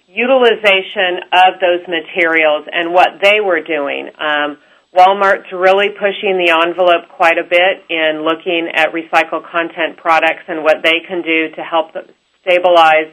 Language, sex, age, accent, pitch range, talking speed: English, female, 40-59, American, 160-180 Hz, 145 wpm